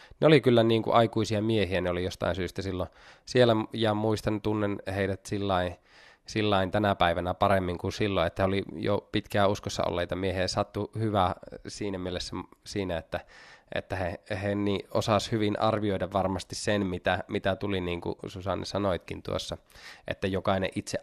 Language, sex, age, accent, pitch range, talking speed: Finnish, male, 20-39, native, 100-120 Hz, 165 wpm